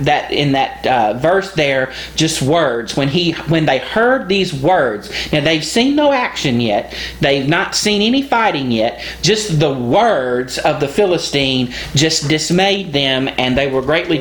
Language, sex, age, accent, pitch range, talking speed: English, male, 40-59, American, 145-205 Hz, 170 wpm